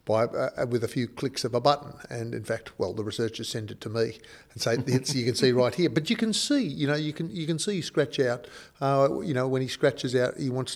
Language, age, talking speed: English, 50-69, 275 wpm